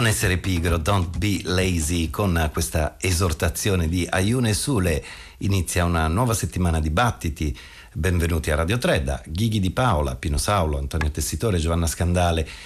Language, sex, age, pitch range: Italian, male, 50-69, 80-100 Hz